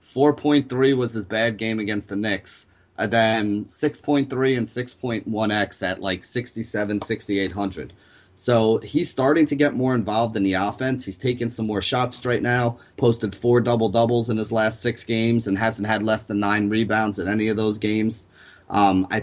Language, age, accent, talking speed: English, 30-49, American, 175 wpm